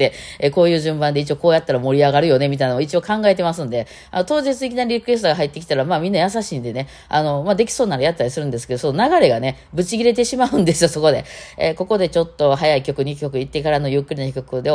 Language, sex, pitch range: Japanese, female, 135-195 Hz